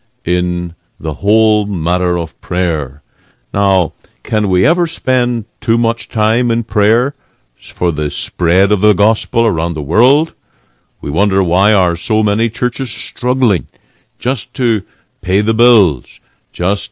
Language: English